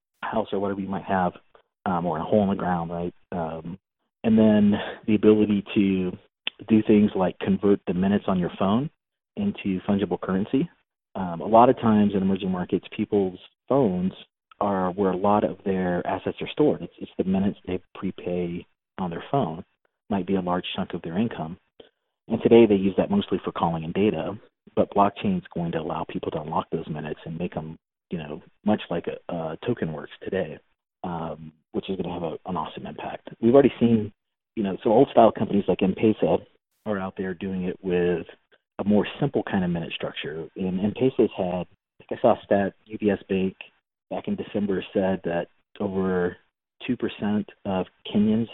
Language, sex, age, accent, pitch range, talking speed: English, male, 40-59, American, 90-105 Hz, 190 wpm